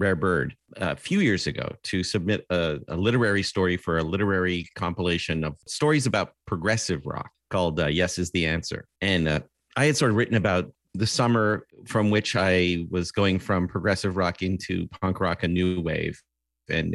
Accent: American